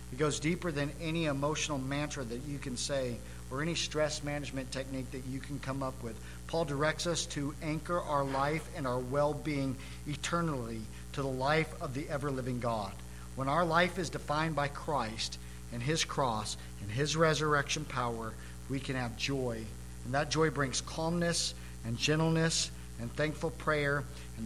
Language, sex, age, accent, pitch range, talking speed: English, male, 50-69, American, 130-195 Hz, 170 wpm